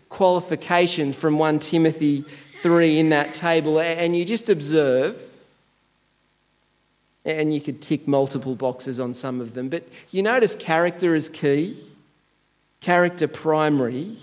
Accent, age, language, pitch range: Australian, 30-49, English, 135-180 Hz